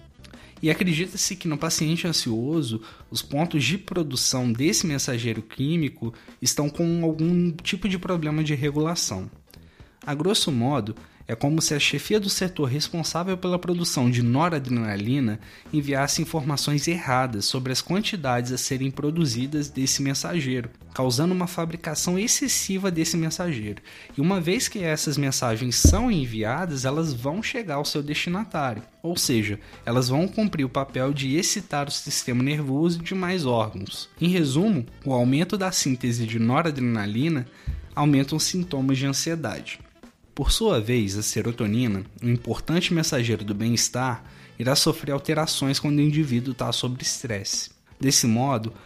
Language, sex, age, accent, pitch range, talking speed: Portuguese, male, 20-39, Brazilian, 125-165 Hz, 140 wpm